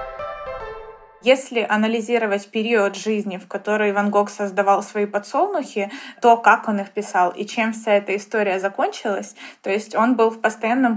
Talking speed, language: 155 wpm, Ukrainian